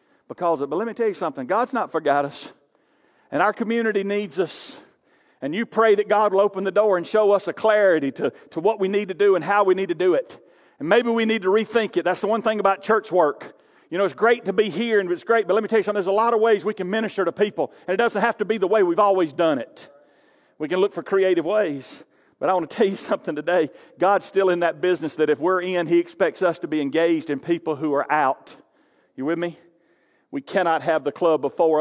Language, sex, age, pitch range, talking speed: English, male, 50-69, 145-205 Hz, 265 wpm